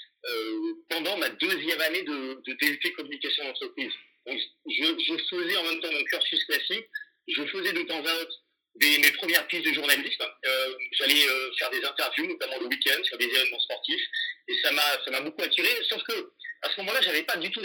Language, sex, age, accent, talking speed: French, male, 40-59, French, 205 wpm